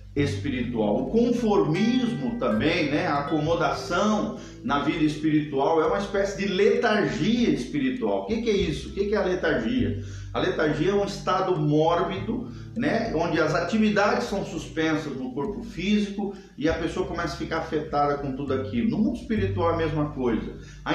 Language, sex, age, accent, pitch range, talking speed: Portuguese, male, 40-59, Brazilian, 150-205 Hz, 165 wpm